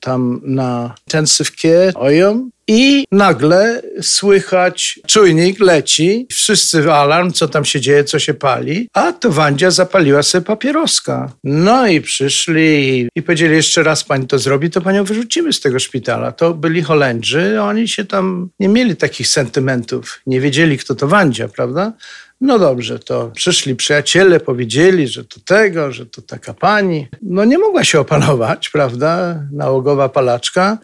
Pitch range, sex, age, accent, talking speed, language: 135-180 Hz, male, 50-69, native, 150 wpm, Polish